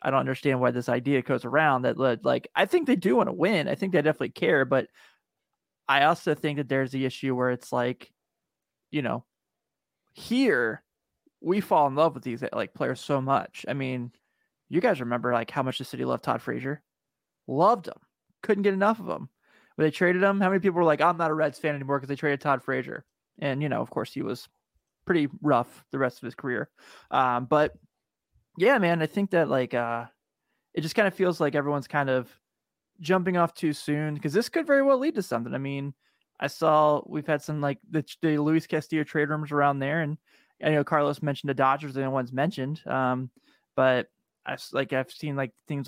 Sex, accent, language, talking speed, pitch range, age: male, American, English, 215 wpm, 135-165 Hz, 20-39